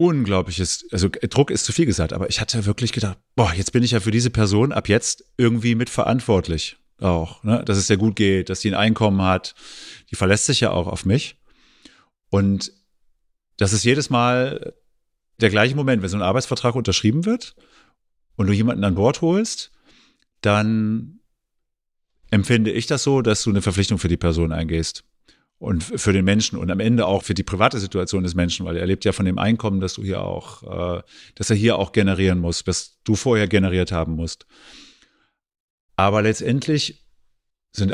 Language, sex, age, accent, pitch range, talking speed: German, male, 40-59, German, 95-115 Hz, 185 wpm